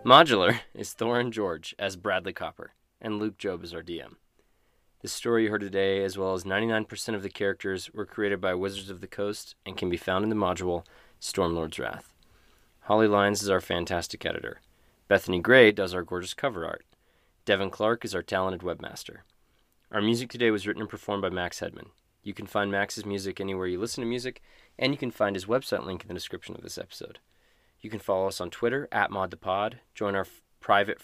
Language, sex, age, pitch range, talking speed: English, male, 20-39, 95-110 Hz, 205 wpm